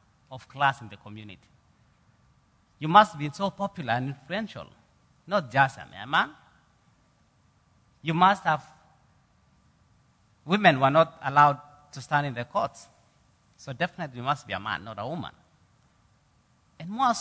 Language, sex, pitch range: English, male, 115-155 Hz